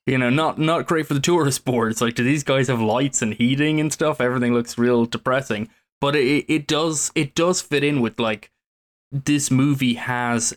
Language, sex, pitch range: English, male, 115-135 Hz